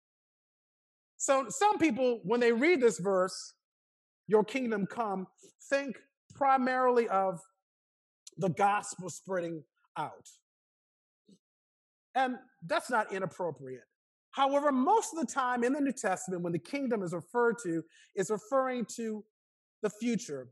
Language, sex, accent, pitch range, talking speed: English, male, American, 195-275 Hz, 125 wpm